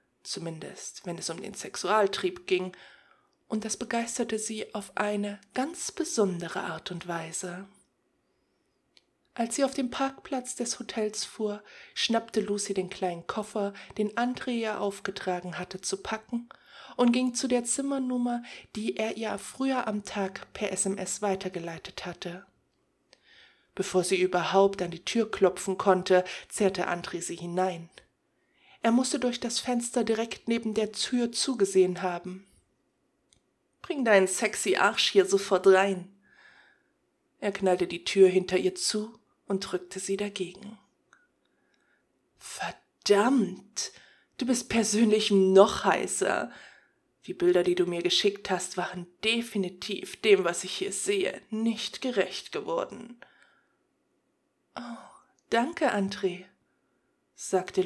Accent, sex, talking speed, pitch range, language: German, female, 125 wpm, 185-240 Hz, German